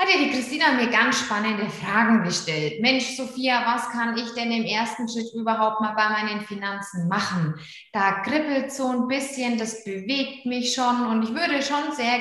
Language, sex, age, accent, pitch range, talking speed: German, female, 20-39, German, 215-260 Hz, 185 wpm